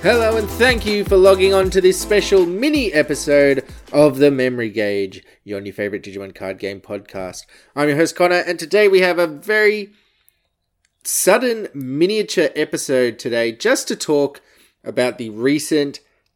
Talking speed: 160 wpm